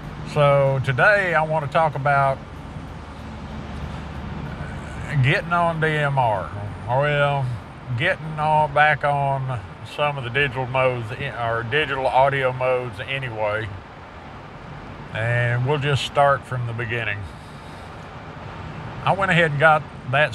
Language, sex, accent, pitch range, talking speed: English, male, American, 115-140 Hz, 115 wpm